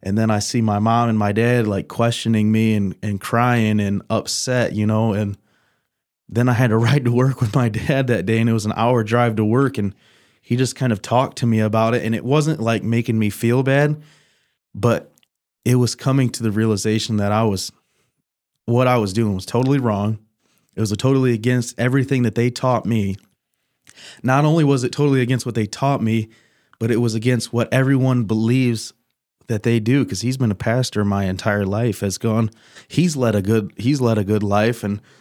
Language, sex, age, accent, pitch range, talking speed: English, male, 20-39, American, 105-125 Hz, 210 wpm